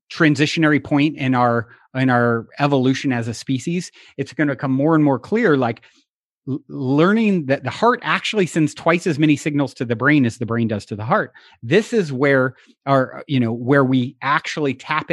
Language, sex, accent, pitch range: English, male, American, 125-155 Hz